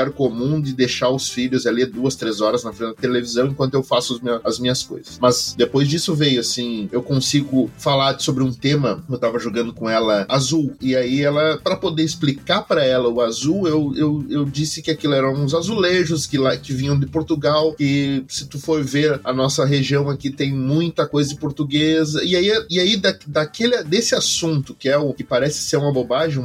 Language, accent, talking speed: Portuguese, Brazilian, 195 wpm